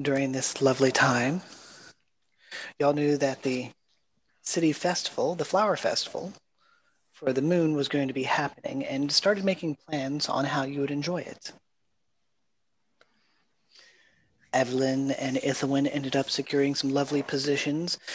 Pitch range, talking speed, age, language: 135-155 Hz, 130 wpm, 30-49, English